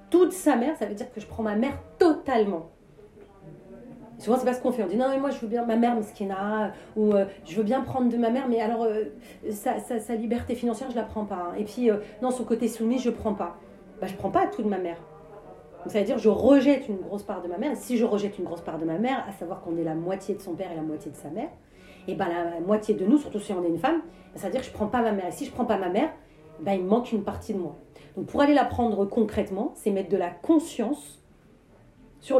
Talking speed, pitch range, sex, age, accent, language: 290 wpm, 180-250 Hz, female, 40-59, French, French